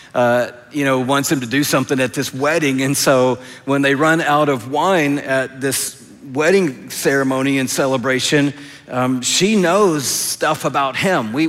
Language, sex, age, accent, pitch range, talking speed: English, male, 50-69, American, 130-165 Hz, 165 wpm